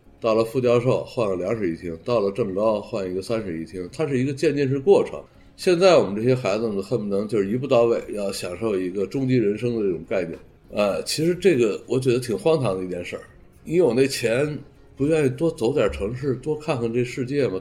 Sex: male